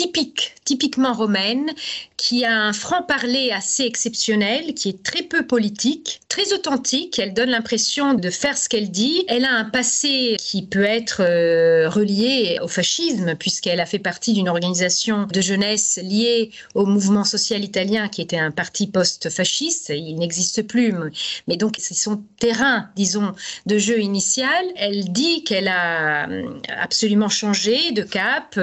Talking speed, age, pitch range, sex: 155 wpm, 40-59, 195-245 Hz, female